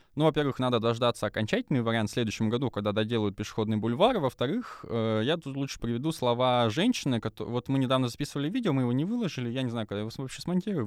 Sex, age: male, 20-39